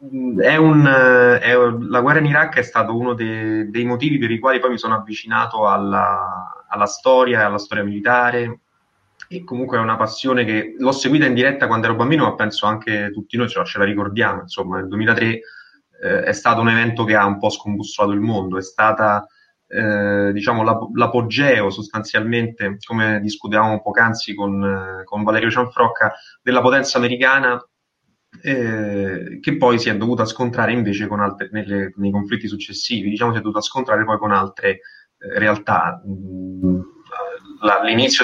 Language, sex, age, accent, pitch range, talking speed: Italian, male, 20-39, native, 105-125 Hz, 160 wpm